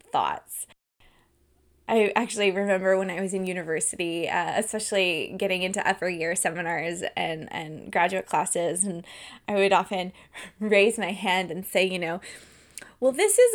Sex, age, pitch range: female, 20-39, 185-220 Hz